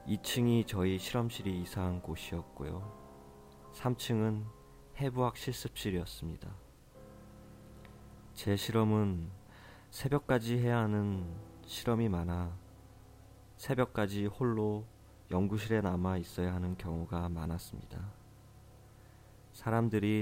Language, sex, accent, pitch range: Korean, male, native, 85-105 Hz